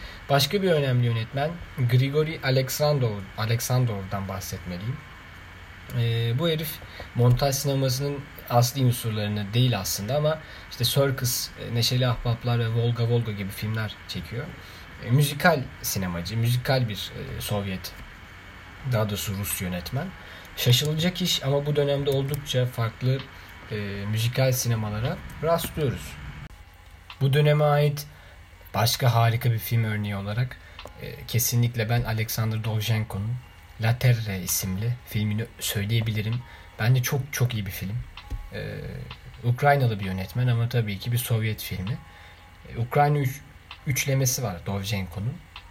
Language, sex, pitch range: Turkish, male, 100-130 Hz